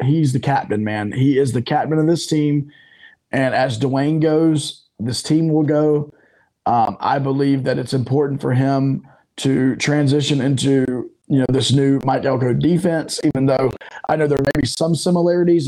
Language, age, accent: English, 20-39, American